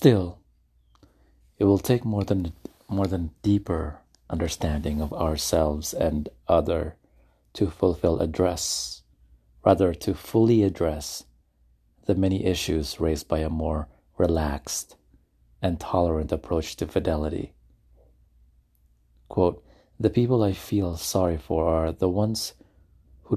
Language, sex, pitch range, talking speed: English, male, 70-95 Hz, 115 wpm